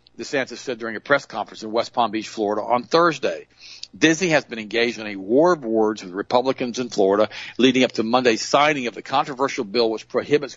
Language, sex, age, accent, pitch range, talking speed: English, male, 50-69, American, 110-135 Hz, 210 wpm